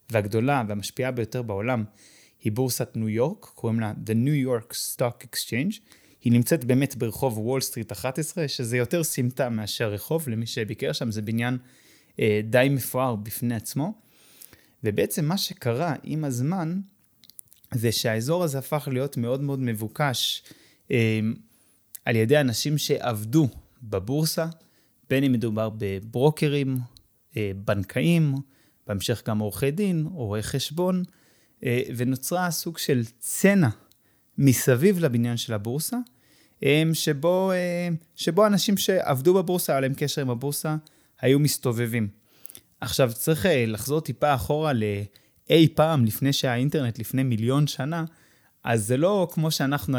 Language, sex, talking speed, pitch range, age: Hebrew, male, 125 wpm, 115-150 Hz, 20-39